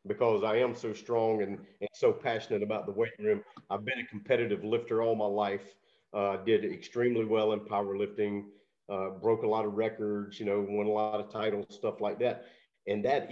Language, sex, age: English, male, 50-69